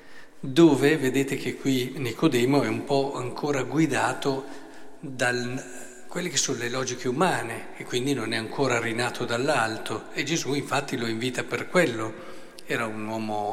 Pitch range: 125-175 Hz